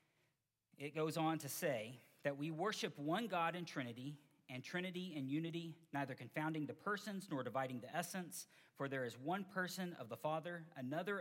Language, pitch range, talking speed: English, 135-170 Hz, 175 wpm